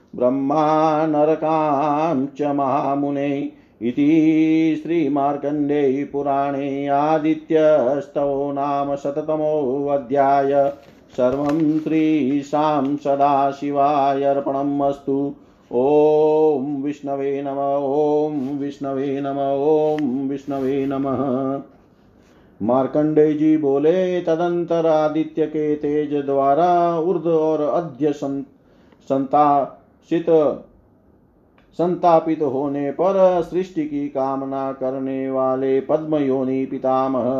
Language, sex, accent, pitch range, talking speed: Hindi, male, native, 140-160 Hz, 60 wpm